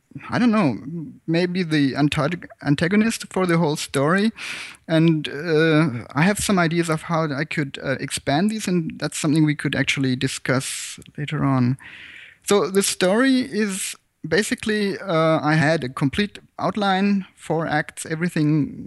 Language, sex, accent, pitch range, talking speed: English, male, German, 140-180 Hz, 145 wpm